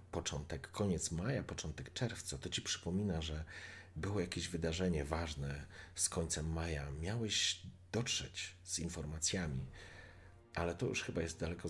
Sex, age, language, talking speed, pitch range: male, 40-59, Polish, 135 wpm, 80-105 Hz